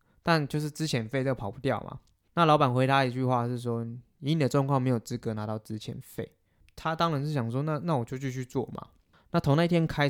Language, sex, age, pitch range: Chinese, male, 20-39, 115-145 Hz